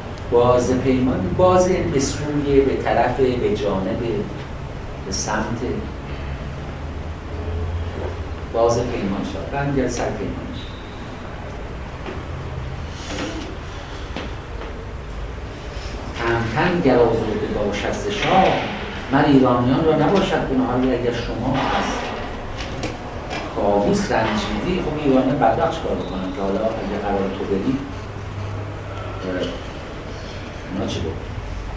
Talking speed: 75 wpm